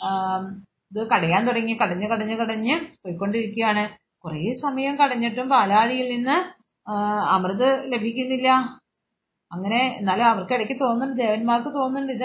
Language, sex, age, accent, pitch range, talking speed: Malayalam, female, 30-49, native, 215-270 Hz, 100 wpm